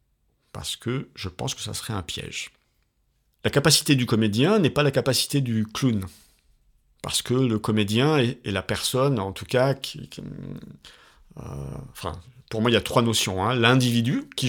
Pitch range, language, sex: 95-130 Hz, French, male